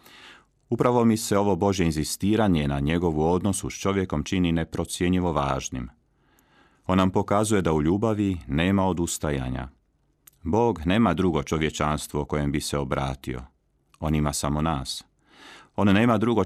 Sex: male